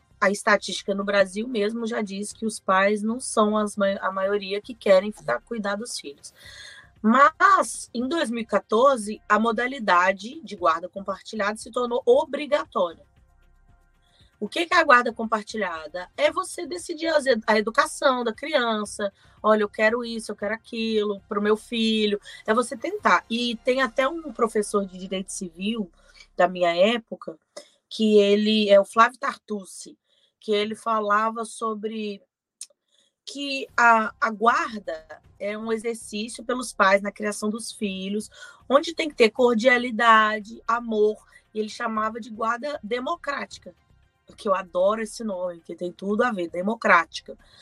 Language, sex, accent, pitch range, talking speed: Portuguese, female, Brazilian, 205-250 Hz, 145 wpm